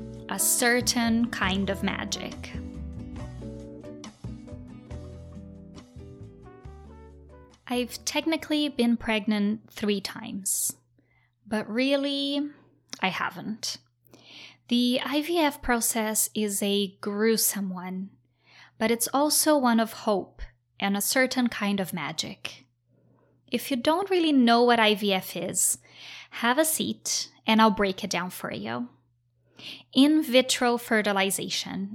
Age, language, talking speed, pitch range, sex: 20-39, English, 105 wpm, 190-260 Hz, female